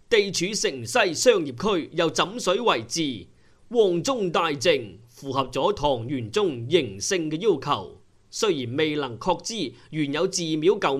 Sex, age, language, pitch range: male, 30-49, Chinese, 135-185 Hz